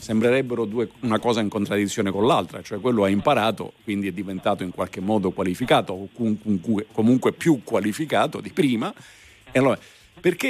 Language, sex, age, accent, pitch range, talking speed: Italian, male, 50-69, native, 105-130 Hz, 160 wpm